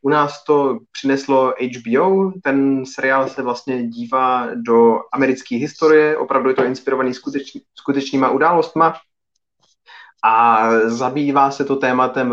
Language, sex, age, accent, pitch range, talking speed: Czech, male, 20-39, native, 115-135 Hz, 120 wpm